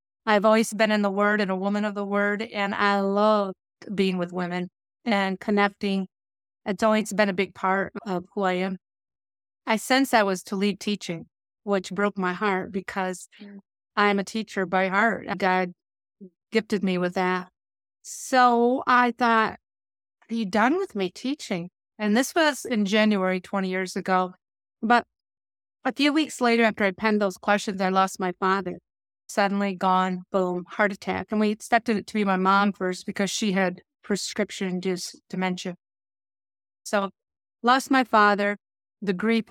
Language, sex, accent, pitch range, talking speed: English, female, American, 185-215 Hz, 165 wpm